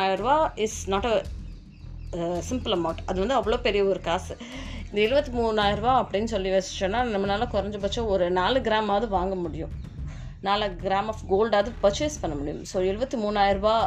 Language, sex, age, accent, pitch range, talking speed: Tamil, female, 20-39, native, 185-255 Hz, 75 wpm